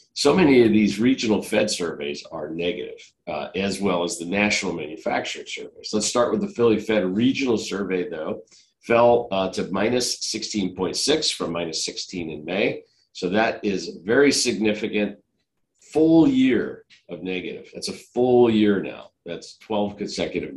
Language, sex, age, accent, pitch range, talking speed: English, male, 50-69, American, 100-130 Hz, 160 wpm